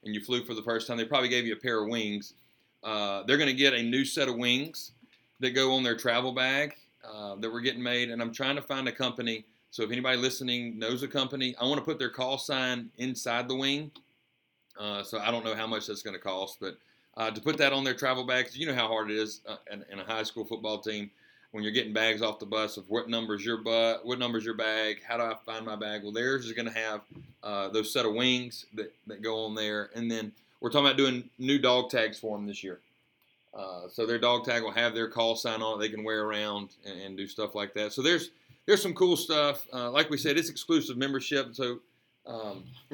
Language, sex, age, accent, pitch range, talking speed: English, male, 30-49, American, 110-135 Hz, 250 wpm